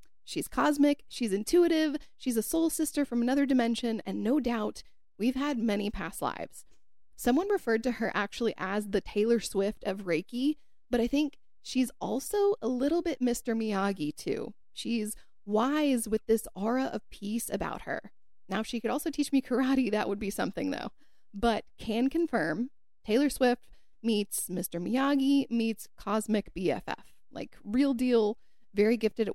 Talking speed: 165 wpm